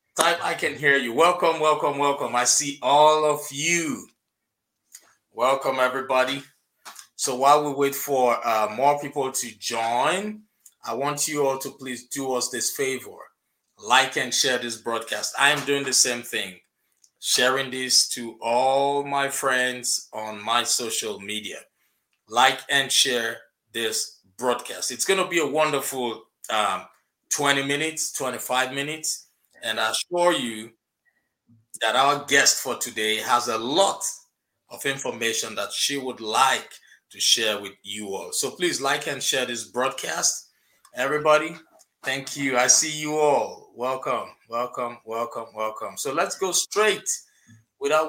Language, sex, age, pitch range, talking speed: English, male, 20-39, 120-150 Hz, 145 wpm